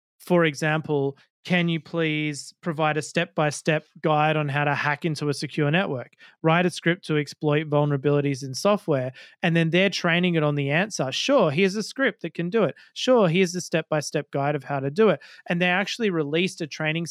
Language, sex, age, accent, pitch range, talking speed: English, male, 30-49, Australian, 145-170 Hz, 200 wpm